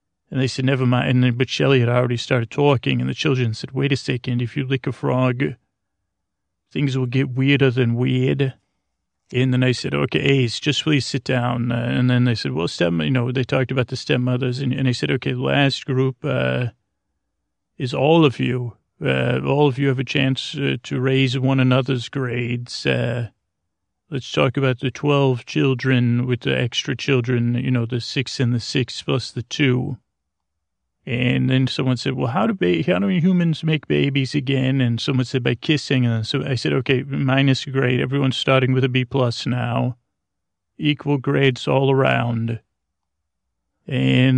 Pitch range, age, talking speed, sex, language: 115-135 Hz, 30-49, 185 wpm, male, English